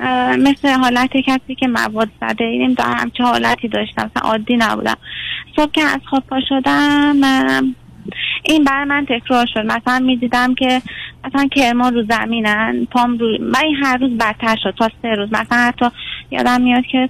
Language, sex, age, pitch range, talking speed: Persian, female, 30-49, 220-265 Hz, 170 wpm